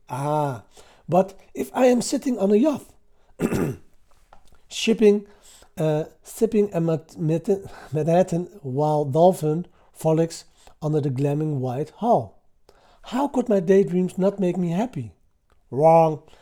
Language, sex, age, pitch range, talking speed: Dutch, male, 60-79, 130-200 Hz, 105 wpm